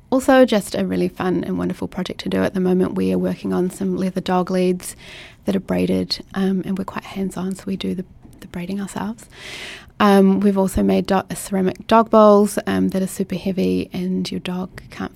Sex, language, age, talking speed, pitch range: female, English, 30-49, 205 wpm, 125-200 Hz